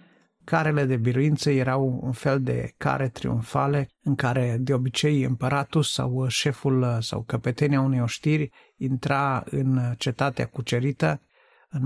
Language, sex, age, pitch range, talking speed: Romanian, male, 50-69, 125-145 Hz, 125 wpm